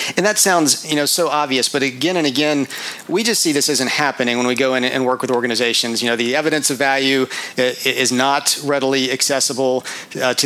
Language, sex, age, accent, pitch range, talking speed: English, male, 40-59, American, 130-150 Hz, 210 wpm